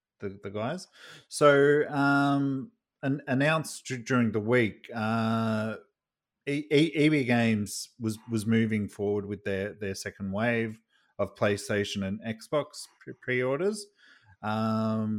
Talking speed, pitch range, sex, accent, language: 125 wpm, 95-135 Hz, male, Australian, English